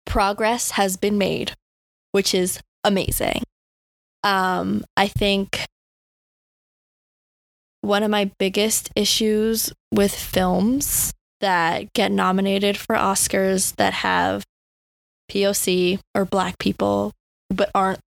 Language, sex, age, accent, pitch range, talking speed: English, female, 20-39, American, 190-230 Hz, 100 wpm